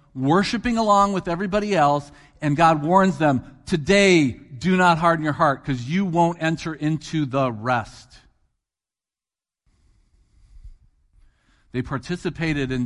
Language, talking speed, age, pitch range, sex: English, 115 wpm, 50-69, 105-145 Hz, male